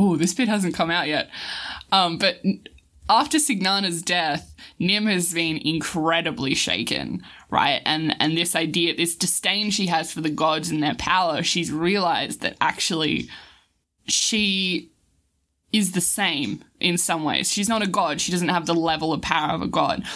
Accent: Australian